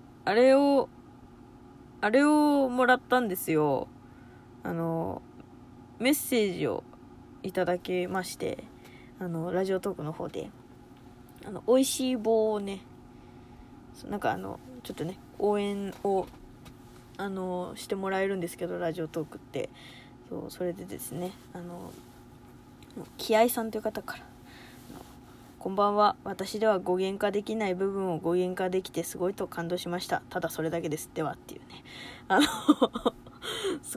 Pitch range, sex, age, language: 175-255 Hz, female, 20-39, Japanese